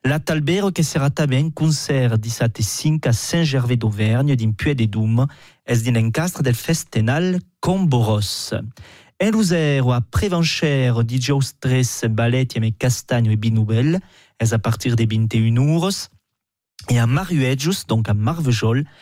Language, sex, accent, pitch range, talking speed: French, male, French, 115-155 Hz, 145 wpm